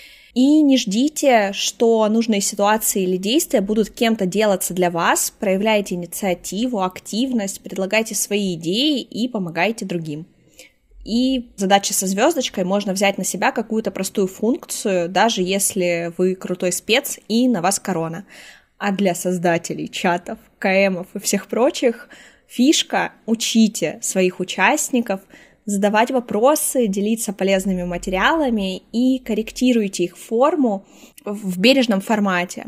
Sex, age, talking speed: female, 20-39, 125 wpm